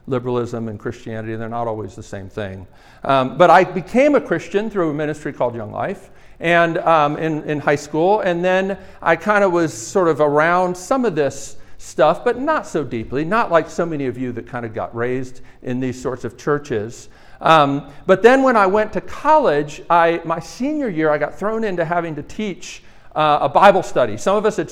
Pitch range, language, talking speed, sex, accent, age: 140-185 Hz, English, 210 wpm, male, American, 50-69